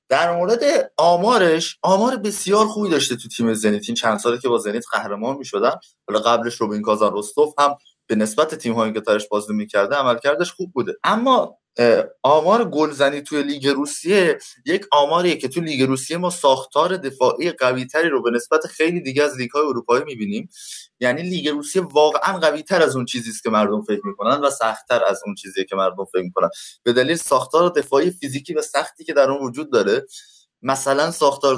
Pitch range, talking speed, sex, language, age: 115-170 Hz, 190 wpm, male, Persian, 20-39